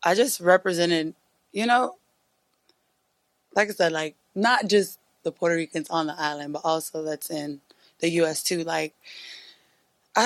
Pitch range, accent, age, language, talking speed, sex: 160-205 Hz, American, 20-39, Spanish, 150 wpm, female